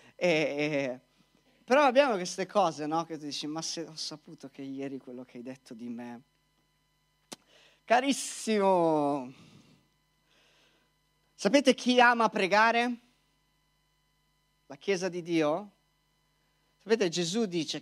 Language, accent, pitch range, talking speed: Italian, native, 150-210 Hz, 115 wpm